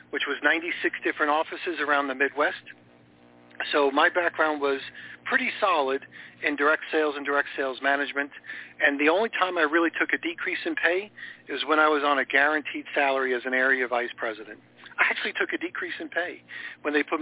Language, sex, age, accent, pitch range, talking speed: English, male, 50-69, American, 140-165 Hz, 190 wpm